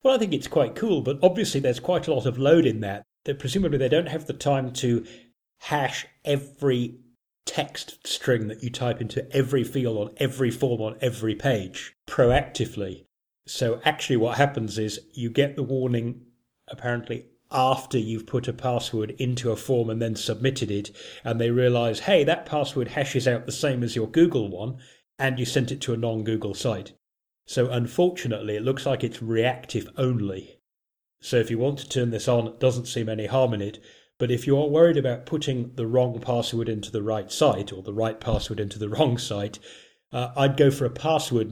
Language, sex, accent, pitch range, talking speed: English, male, British, 115-135 Hz, 195 wpm